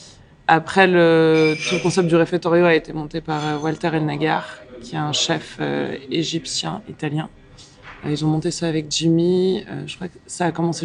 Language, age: English, 20-39